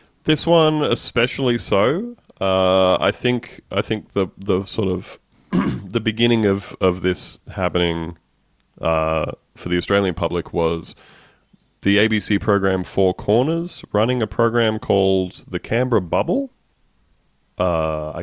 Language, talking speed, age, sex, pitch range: English, 125 wpm, 30-49, male, 85-110 Hz